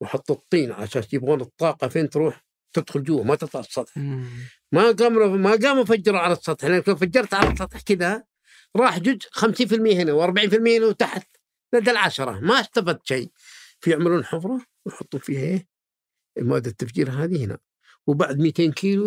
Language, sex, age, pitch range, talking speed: Arabic, male, 50-69, 150-220 Hz, 155 wpm